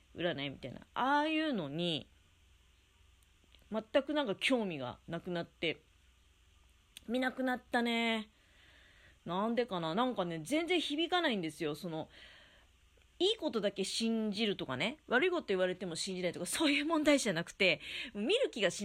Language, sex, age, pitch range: Japanese, female, 30-49, 155-250 Hz